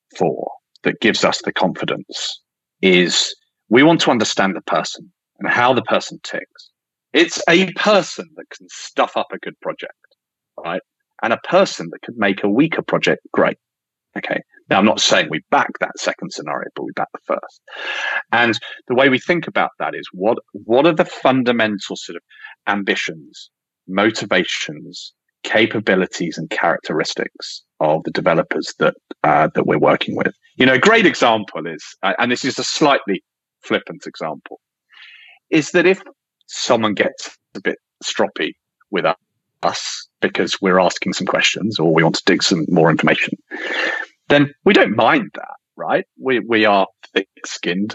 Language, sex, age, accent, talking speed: English, male, 40-59, British, 160 wpm